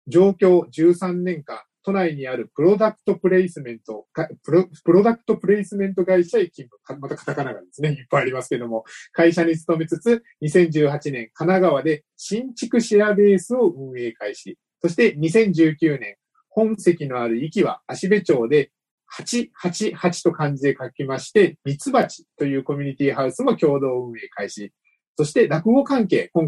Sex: male